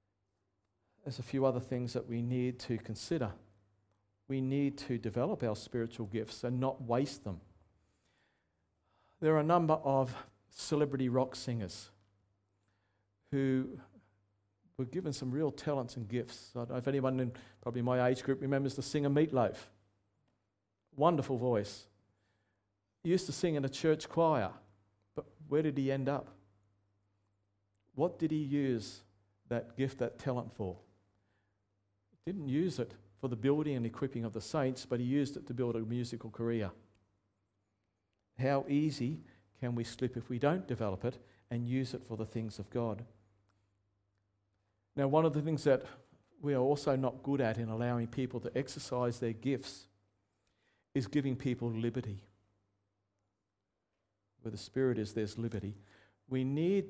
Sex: male